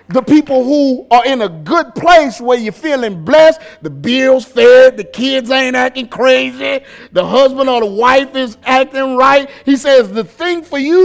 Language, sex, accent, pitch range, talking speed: English, male, American, 175-255 Hz, 185 wpm